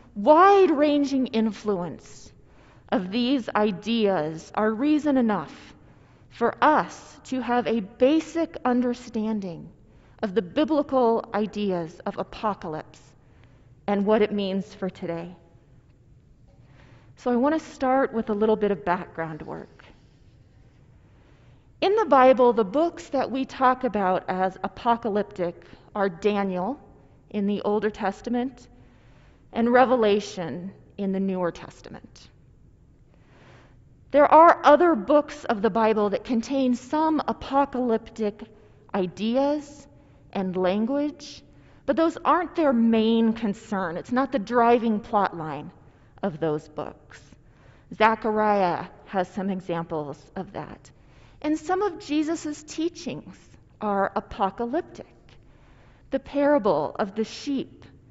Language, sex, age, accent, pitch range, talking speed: English, female, 30-49, American, 185-265 Hz, 115 wpm